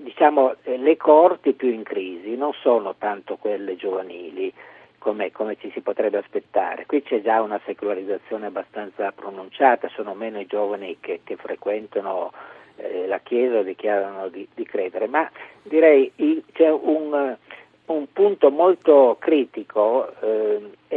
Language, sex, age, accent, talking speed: Italian, male, 50-69, native, 140 wpm